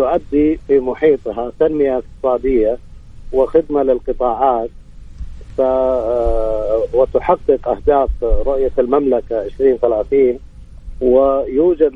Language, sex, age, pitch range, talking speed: Arabic, male, 50-69, 135-210 Hz, 70 wpm